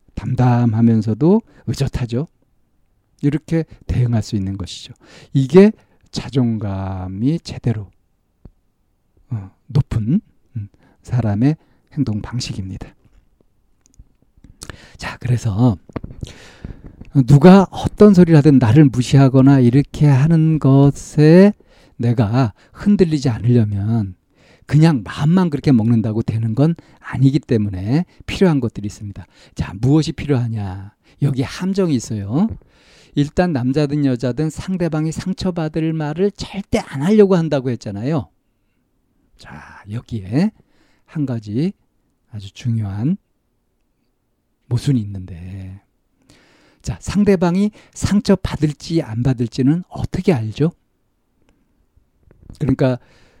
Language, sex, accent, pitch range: Korean, male, native, 110-155 Hz